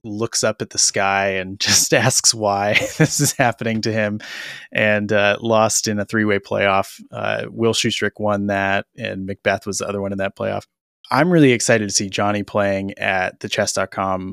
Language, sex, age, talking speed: English, male, 20-39, 190 wpm